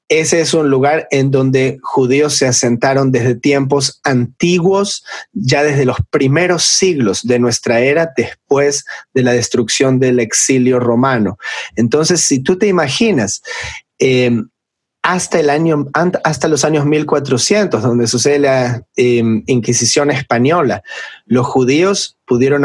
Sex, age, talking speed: male, 30-49, 120 wpm